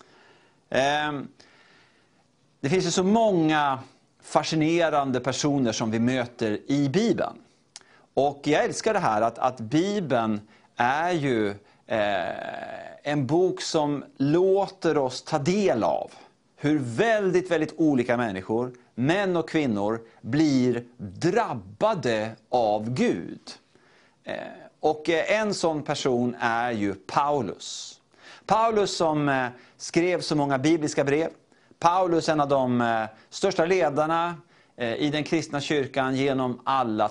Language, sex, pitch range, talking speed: Swedish, male, 125-175 Hz, 110 wpm